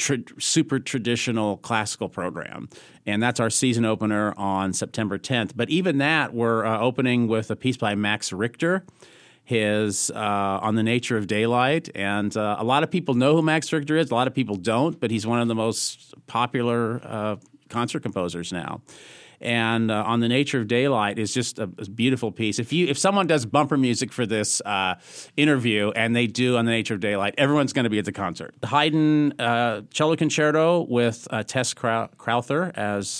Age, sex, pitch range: 40-59, male, 110-145 Hz